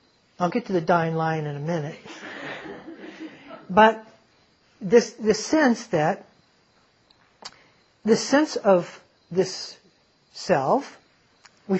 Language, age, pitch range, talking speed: English, 60-79, 170-210 Hz, 95 wpm